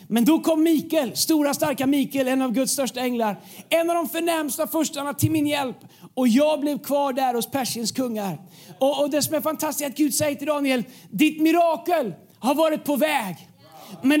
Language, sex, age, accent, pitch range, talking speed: Swedish, male, 40-59, native, 260-320 Hz, 195 wpm